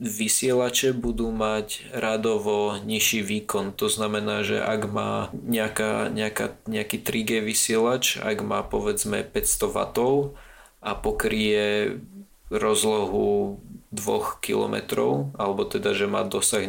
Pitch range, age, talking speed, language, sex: 105-130 Hz, 20-39, 105 wpm, Slovak, male